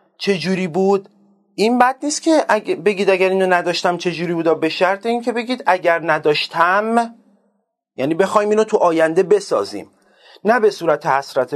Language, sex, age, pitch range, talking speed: Persian, male, 30-49, 160-200 Hz, 155 wpm